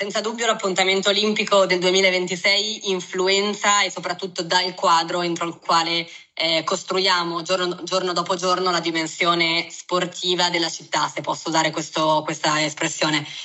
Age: 20-39